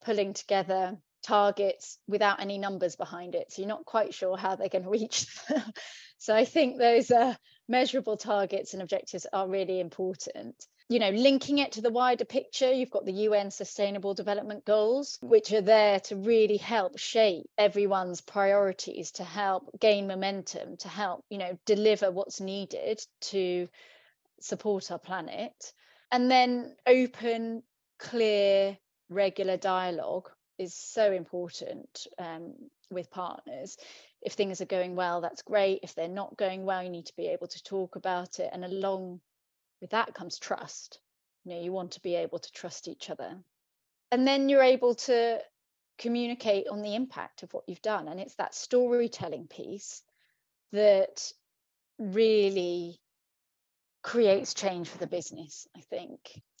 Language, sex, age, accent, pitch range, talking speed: English, female, 30-49, British, 190-230 Hz, 155 wpm